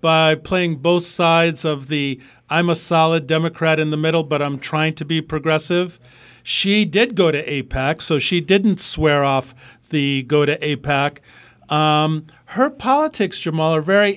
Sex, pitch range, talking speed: male, 145-175 Hz, 165 wpm